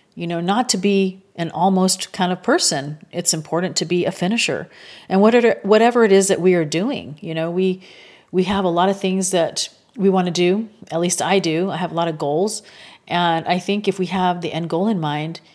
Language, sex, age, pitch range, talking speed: English, female, 40-59, 170-200 Hz, 230 wpm